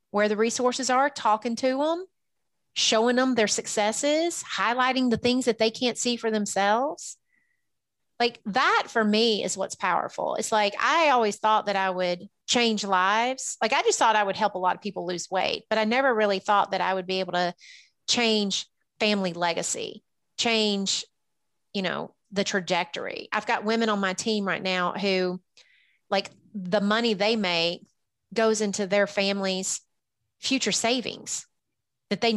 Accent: American